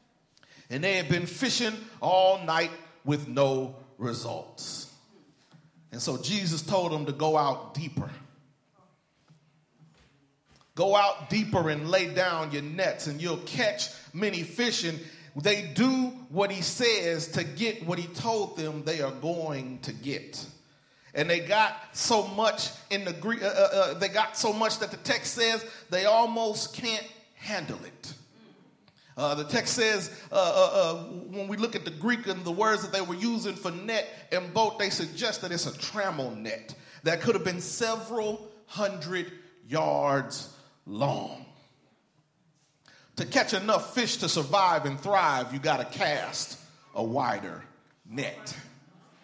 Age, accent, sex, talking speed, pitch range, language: 40-59, American, male, 150 wpm, 155-215 Hz, English